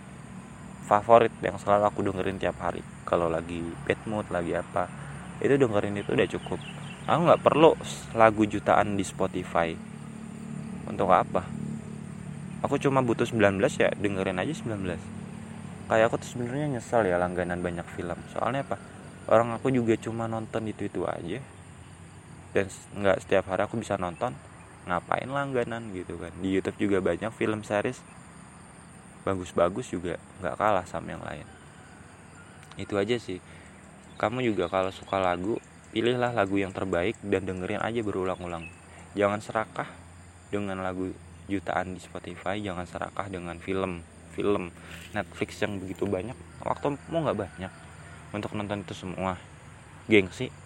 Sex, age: male, 20-39